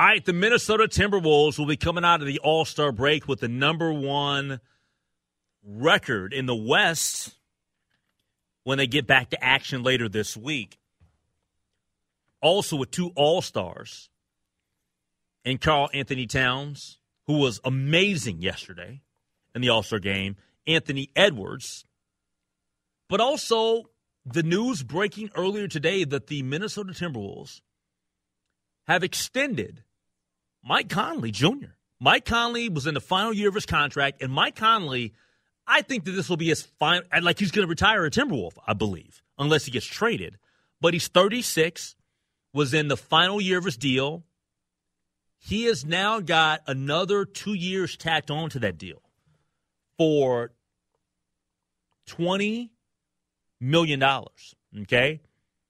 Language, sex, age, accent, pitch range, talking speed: English, male, 40-59, American, 120-175 Hz, 135 wpm